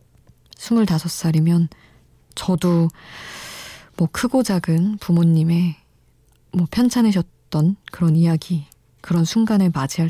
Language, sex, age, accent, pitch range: Korean, female, 20-39, native, 165-195 Hz